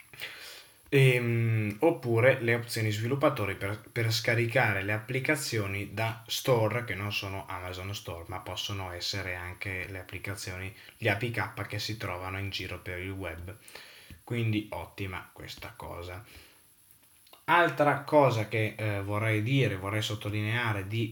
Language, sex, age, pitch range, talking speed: Italian, male, 20-39, 100-130 Hz, 130 wpm